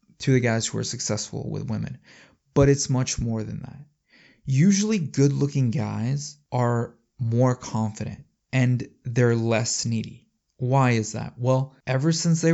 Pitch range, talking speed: 110-130 Hz, 150 wpm